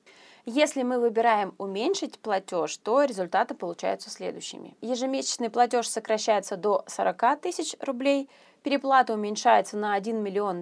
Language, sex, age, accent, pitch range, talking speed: Russian, female, 20-39, native, 205-265 Hz, 120 wpm